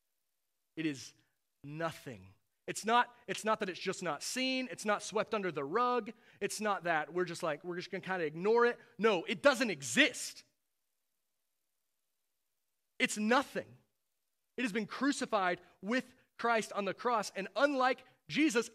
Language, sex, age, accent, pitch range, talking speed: English, male, 30-49, American, 160-235 Hz, 160 wpm